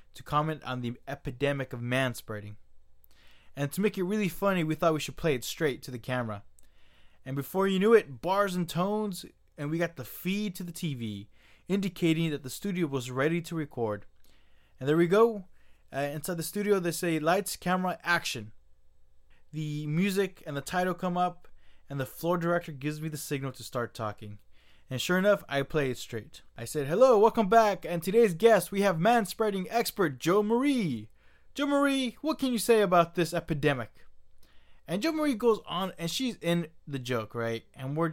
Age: 20-39